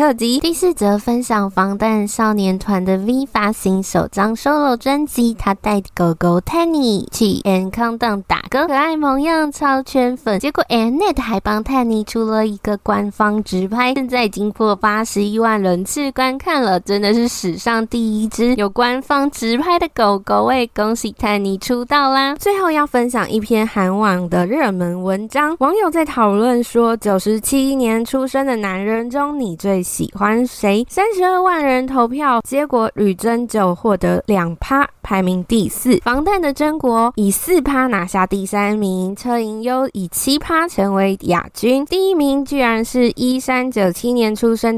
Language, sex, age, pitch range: Chinese, female, 10-29, 205-270 Hz